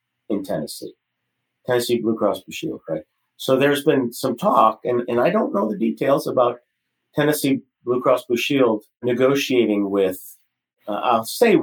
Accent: American